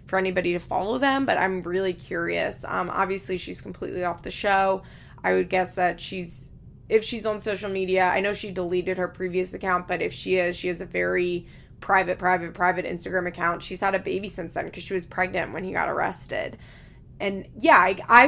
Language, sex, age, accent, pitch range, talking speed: English, female, 20-39, American, 180-190 Hz, 210 wpm